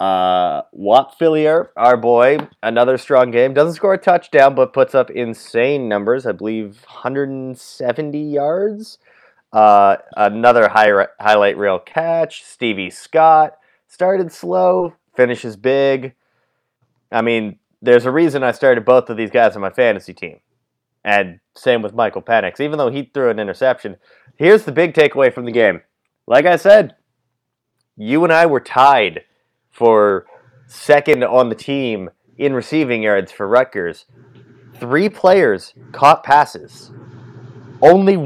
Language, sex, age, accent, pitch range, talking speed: English, male, 30-49, American, 125-180 Hz, 140 wpm